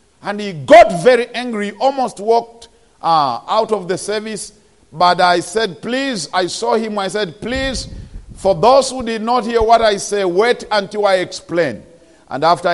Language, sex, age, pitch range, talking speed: English, male, 50-69, 165-225 Hz, 175 wpm